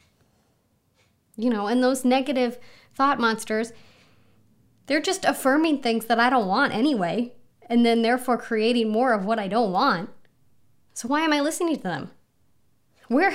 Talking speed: 155 wpm